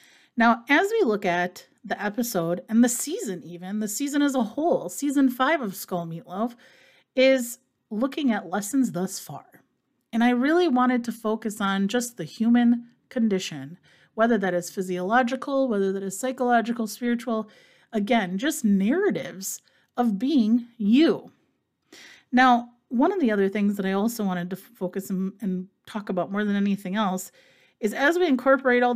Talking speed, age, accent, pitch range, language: 165 wpm, 30-49, American, 200-270 Hz, English